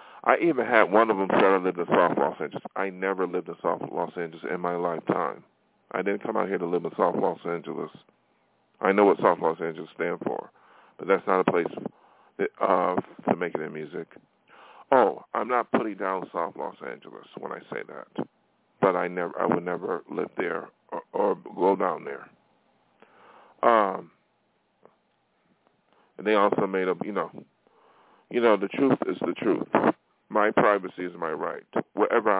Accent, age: American, 40-59